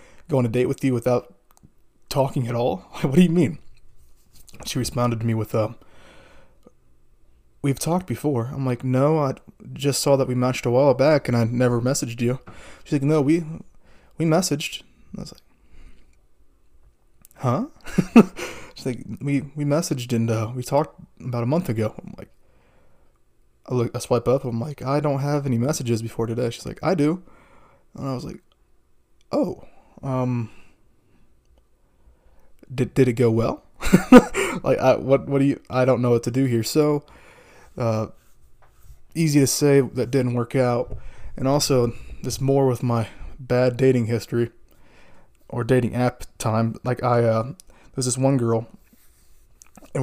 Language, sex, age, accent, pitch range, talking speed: English, male, 20-39, American, 115-140 Hz, 165 wpm